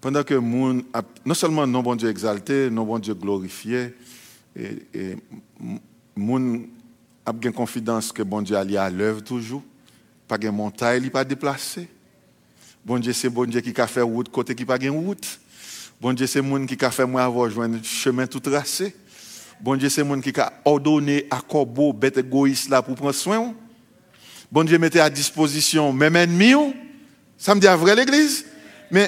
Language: English